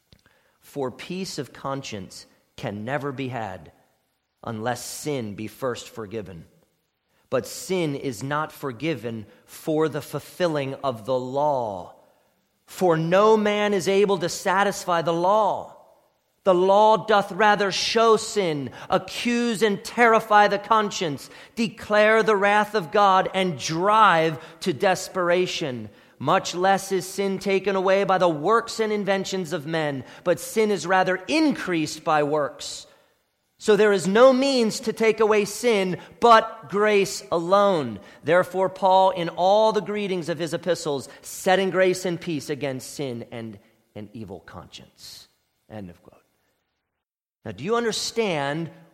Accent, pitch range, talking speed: American, 140-205 Hz, 135 wpm